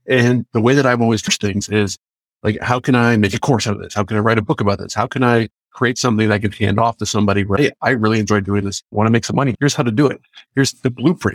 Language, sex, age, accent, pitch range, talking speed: English, male, 50-69, American, 110-145 Hz, 305 wpm